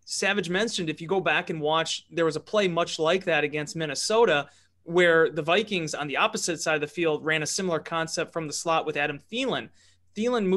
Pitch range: 155-190 Hz